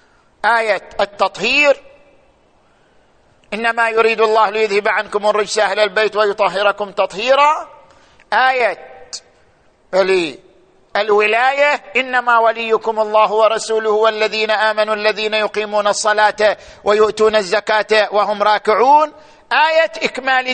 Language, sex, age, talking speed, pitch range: Arabic, male, 50-69, 85 wpm, 215-255 Hz